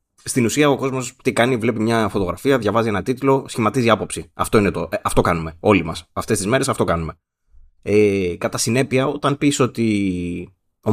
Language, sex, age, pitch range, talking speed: Greek, male, 20-39, 95-120 Hz, 185 wpm